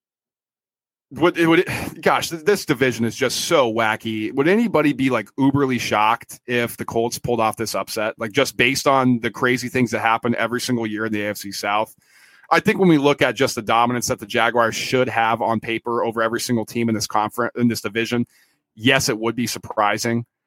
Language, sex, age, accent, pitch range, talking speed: English, male, 30-49, American, 115-140 Hz, 210 wpm